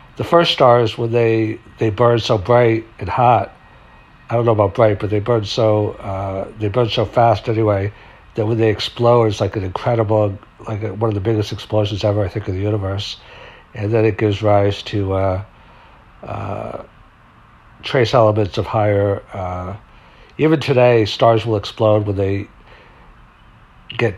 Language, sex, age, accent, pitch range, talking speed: English, male, 60-79, American, 100-115 Hz, 170 wpm